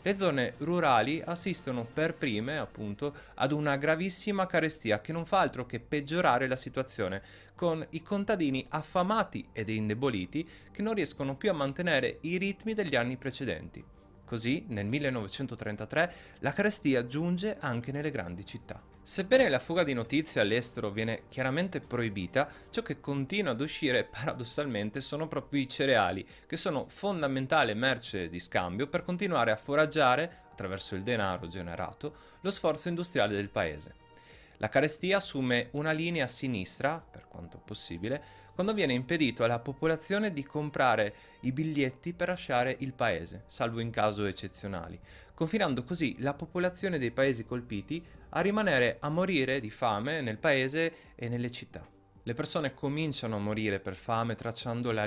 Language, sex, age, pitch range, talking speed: Italian, male, 30-49, 105-155 Hz, 150 wpm